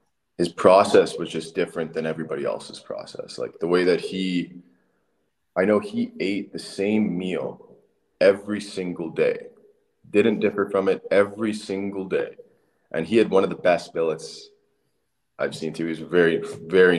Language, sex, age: English, male, 20-39